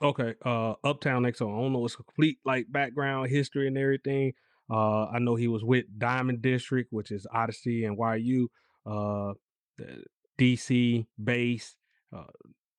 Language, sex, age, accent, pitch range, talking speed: English, male, 30-49, American, 105-125 Hz, 145 wpm